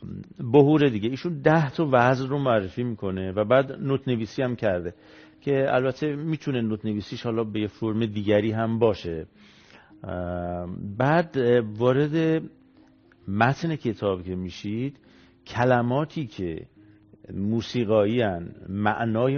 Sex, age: male, 50-69